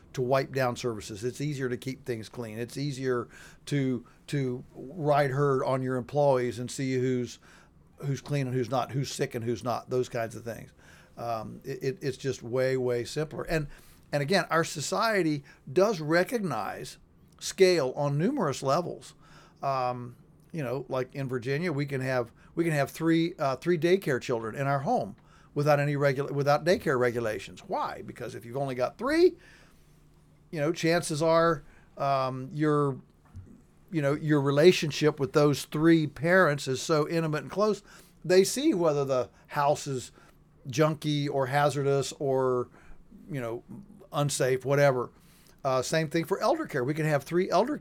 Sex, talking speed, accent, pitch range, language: male, 165 wpm, American, 130-165 Hz, English